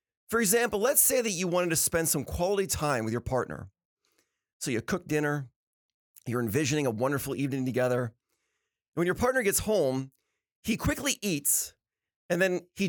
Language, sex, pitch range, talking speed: English, male, 135-200 Hz, 170 wpm